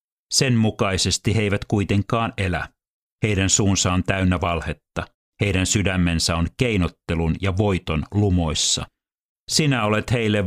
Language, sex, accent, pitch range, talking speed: Finnish, male, native, 85-105 Hz, 120 wpm